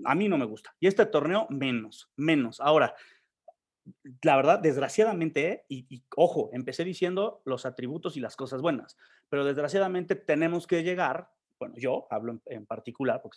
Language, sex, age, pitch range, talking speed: Spanish, male, 40-59, 130-195 Hz, 165 wpm